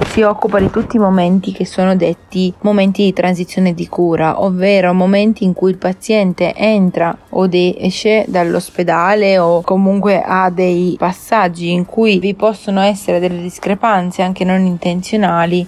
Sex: female